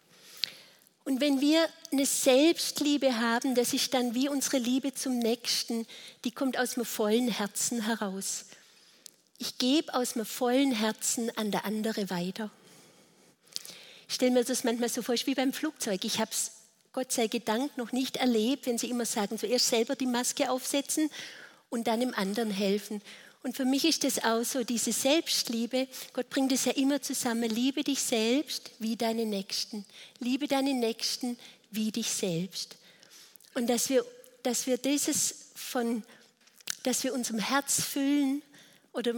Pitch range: 225-270 Hz